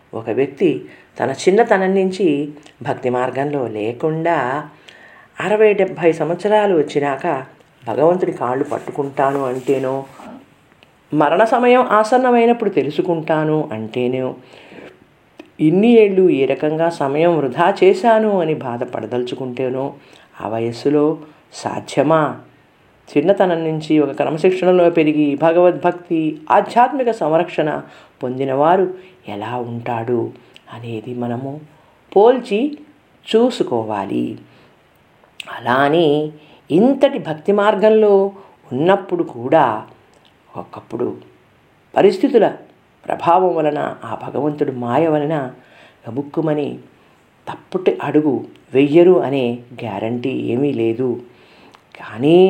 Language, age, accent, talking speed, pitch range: Telugu, 50-69, native, 80 wpm, 130-185 Hz